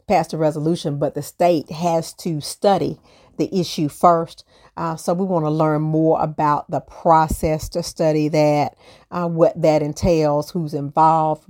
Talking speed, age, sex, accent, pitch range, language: 160 wpm, 40-59, female, American, 155-180 Hz, English